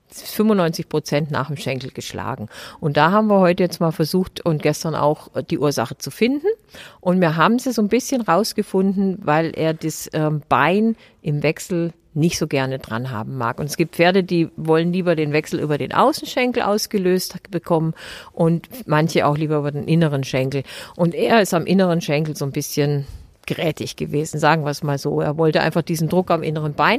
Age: 50-69